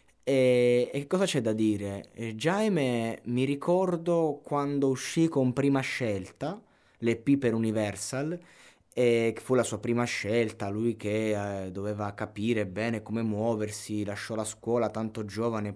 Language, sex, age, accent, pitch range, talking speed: Italian, male, 20-39, native, 110-135 Hz, 135 wpm